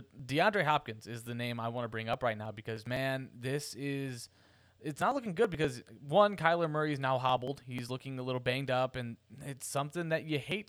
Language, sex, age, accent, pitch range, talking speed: English, male, 20-39, American, 115-140 Hz, 220 wpm